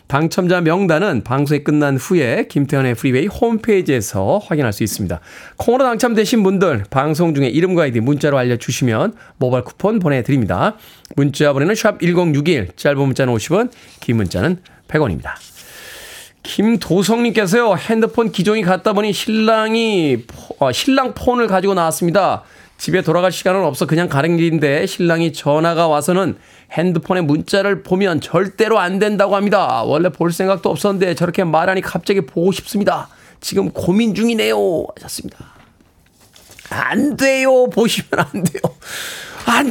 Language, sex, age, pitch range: Korean, male, 20-39, 150-220 Hz